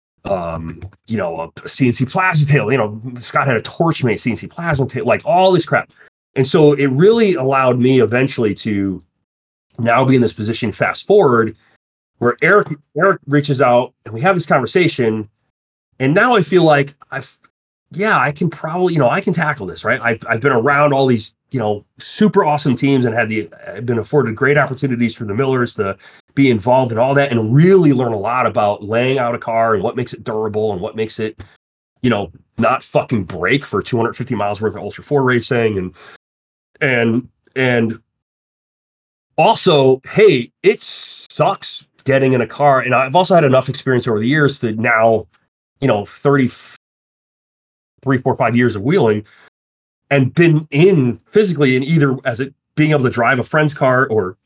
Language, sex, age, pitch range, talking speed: English, male, 30-49, 110-145 Hz, 185 wpm